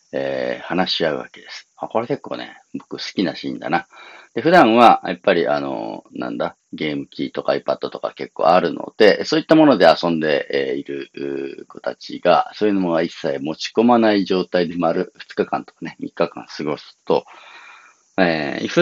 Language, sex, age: Japanese, male, 40-59